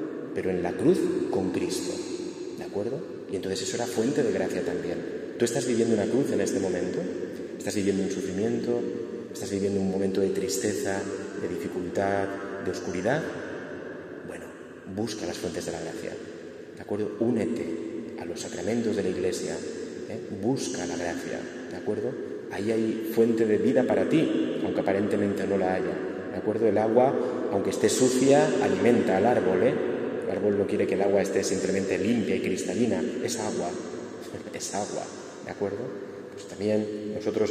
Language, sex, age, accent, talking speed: Spanish, male, 30-49, Spanish, 165 wpm